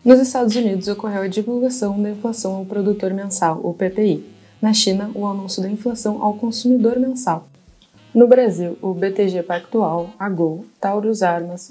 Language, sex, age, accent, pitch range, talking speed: Portuguese, female, 20-39, Brazilian, 180-215 Hz, 160 wpm